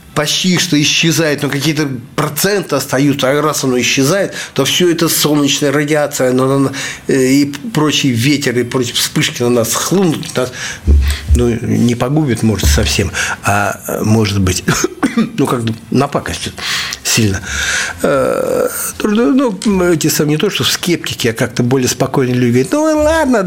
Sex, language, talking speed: male, Russian, 140 wpm